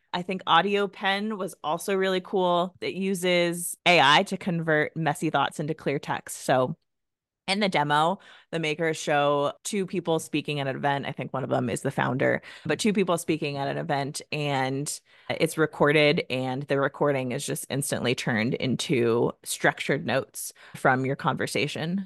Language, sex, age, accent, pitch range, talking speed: English, female, 30-49, American, 145-180 Hz, 170 wpm